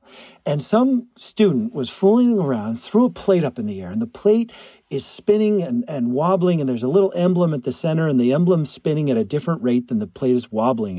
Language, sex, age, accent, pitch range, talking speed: English, male, 50-69, American, 140-215 Hz, 230 wpm